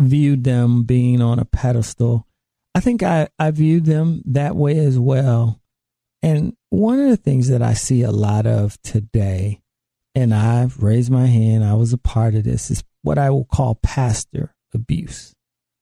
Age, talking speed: 40-59, 175 wpm